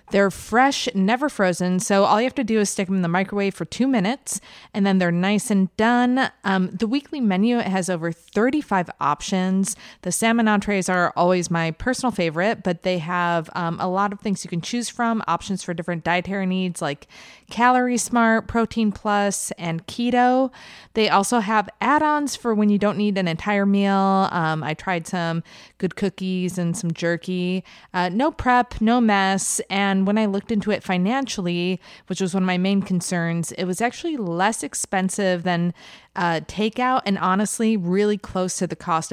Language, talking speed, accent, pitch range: English, 185 wpm, American, 175-225 Hz